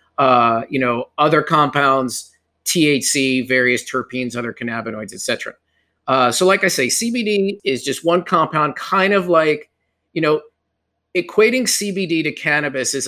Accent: American